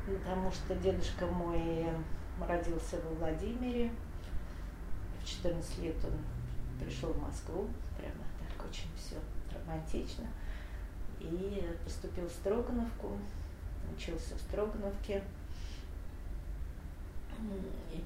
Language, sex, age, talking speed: Russian, female, 40-59, 90 wpm